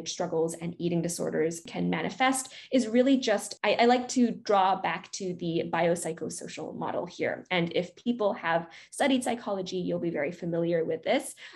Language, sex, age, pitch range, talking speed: English, female, 20-39, 170-210 Hz, 165 wpm